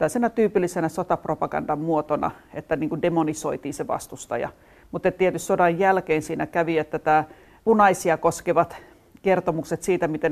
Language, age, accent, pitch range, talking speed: Finnish, 40-59, native, 155-180 Hz, 120 wpm